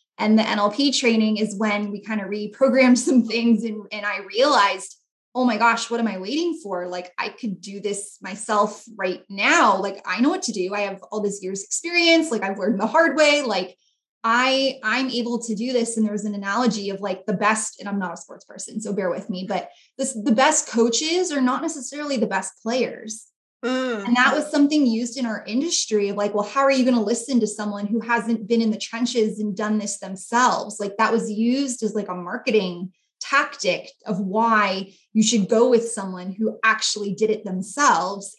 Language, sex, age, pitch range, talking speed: English, female, 20-39, 205-245 Hz, 215 wpm